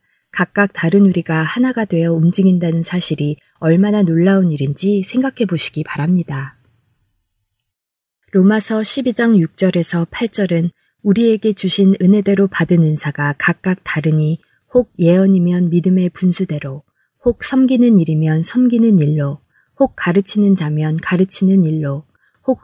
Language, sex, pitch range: Korean, female, 155-205 Hz